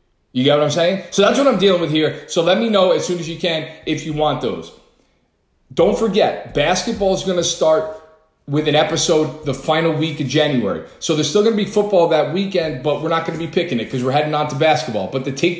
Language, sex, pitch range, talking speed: English, male, 165-215 Hz, 255 wpm